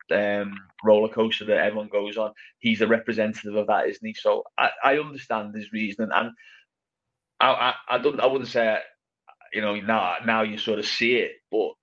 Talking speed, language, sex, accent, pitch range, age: 195 wpm, English, male, British, 105-110 Hz, 20-39